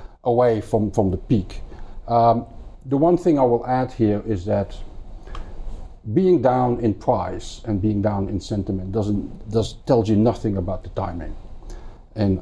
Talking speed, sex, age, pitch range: 160 wpm, male, 50-69, 95-110 Hz